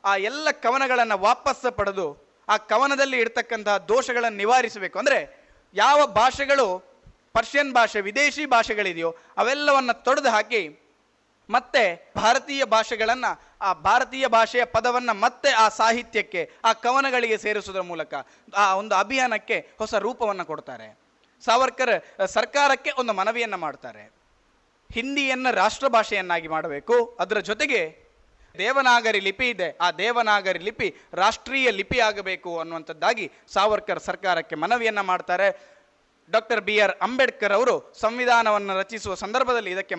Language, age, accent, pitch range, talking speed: Kannada, 20-39, native, 190-250 Hz, 105 wpm